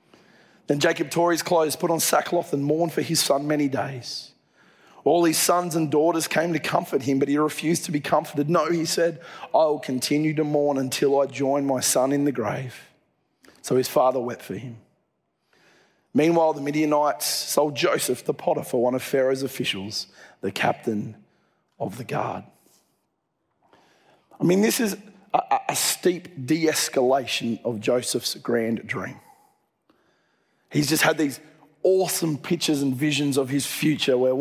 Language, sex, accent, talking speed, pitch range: English, male, Australian, 160 wpm, 140-165 Hz